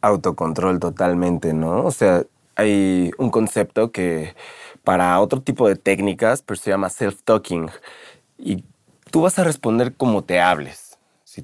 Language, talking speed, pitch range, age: Spanish, 140 wpm, 95-125 Hz, 20-39